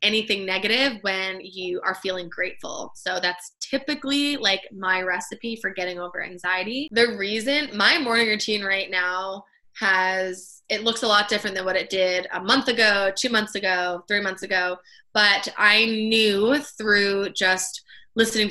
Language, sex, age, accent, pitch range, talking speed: English, female, 20-39, American, 185-215 Hz, 160 wpm